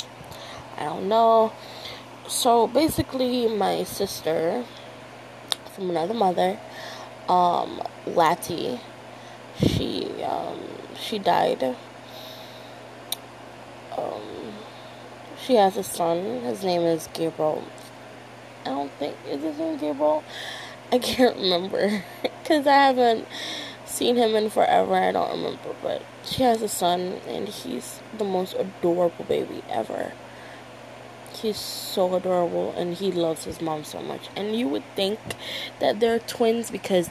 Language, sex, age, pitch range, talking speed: English, female, 20-39, 175-230 Hz, 120 wpm